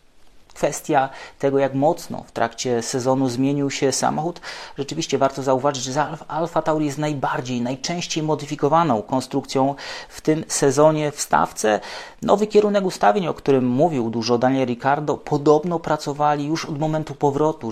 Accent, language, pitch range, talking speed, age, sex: Polish, English, 130-155 Hz, 140 wpm, 30-49, male